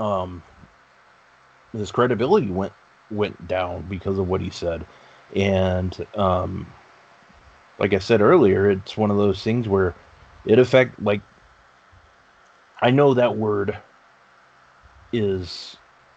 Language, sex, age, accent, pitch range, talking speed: English, male, 30-49, American, 100-125 Hz, 115 wpm